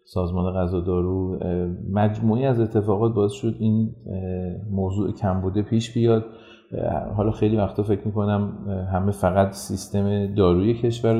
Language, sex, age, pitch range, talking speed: Persian, male, 40-59, 95-110 Hz, 125 wpm